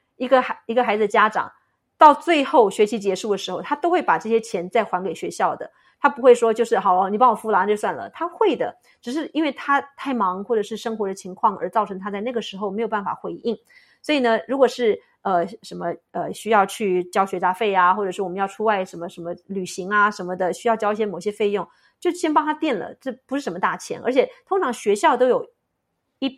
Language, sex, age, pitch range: English, female, 30-49, 190-265 Hz